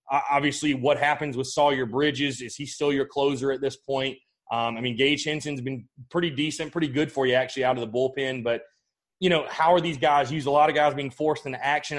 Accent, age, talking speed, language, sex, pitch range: American, 30-49, 235 wpm, English, male, 130-150 Hz